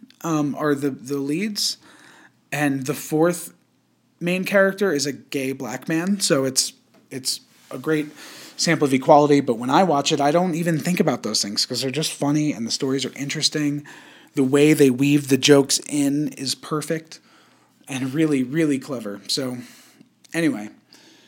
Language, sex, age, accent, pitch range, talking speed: English, male, 30-49, American, 135-165 Hz, 165 wpm